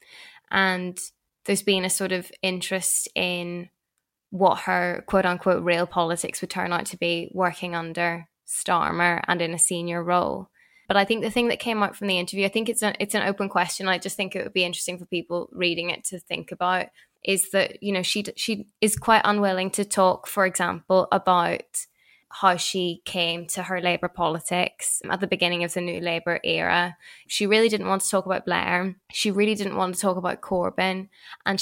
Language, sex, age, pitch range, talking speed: English, female, 10-29, 180-200 Hz, 200 wpm